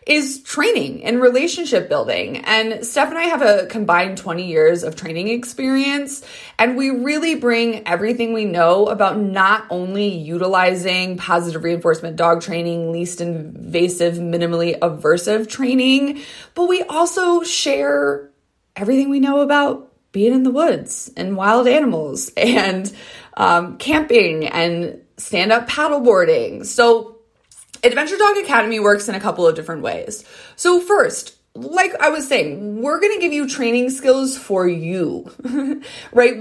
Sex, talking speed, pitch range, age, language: female, 145 wpm, 180-275 Hz, 20-39, English